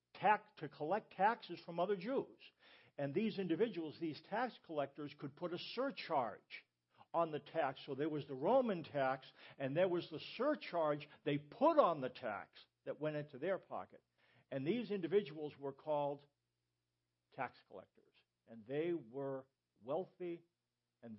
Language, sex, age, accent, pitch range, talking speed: English, male, 60-79, American, 115-175 Hz, 145 wpm